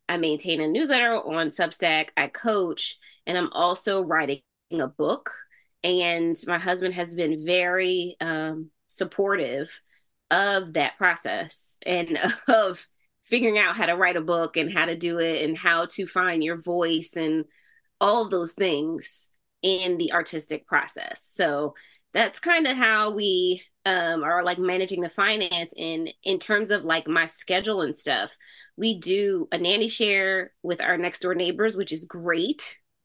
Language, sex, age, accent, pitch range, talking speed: English, female, 20-39, American, 165-210 Hz, 160 wpm